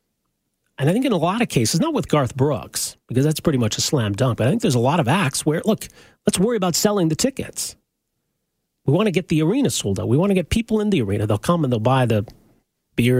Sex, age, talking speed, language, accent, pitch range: male, 40-59, 265 wpm, English, American, 120-175 Hz